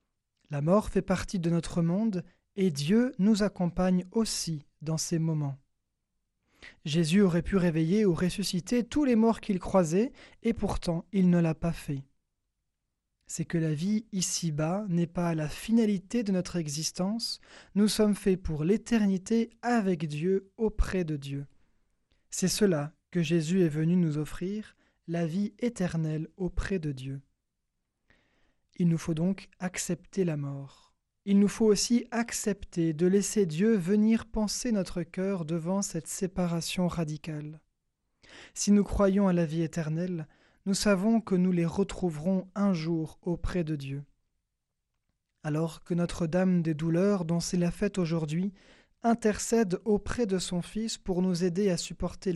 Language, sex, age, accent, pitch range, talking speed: French, male, 20-39, French, 165-200 Hz, 150 wpm